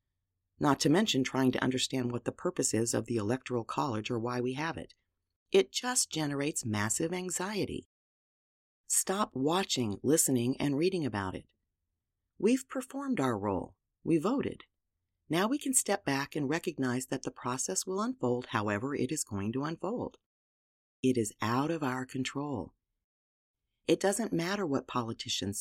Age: 40-59